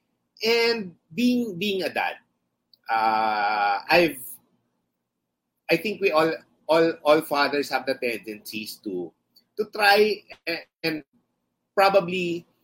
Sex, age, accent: male, 30-49, native